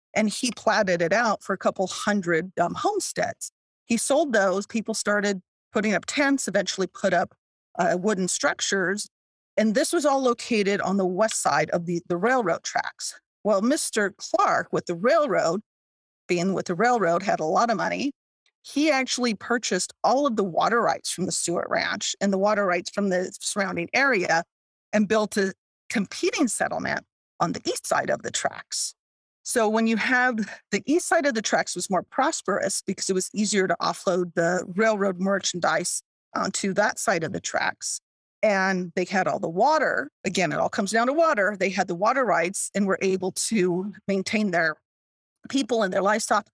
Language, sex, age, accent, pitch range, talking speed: English, female, 40-59, American, 185-230 Hz, 185 wpm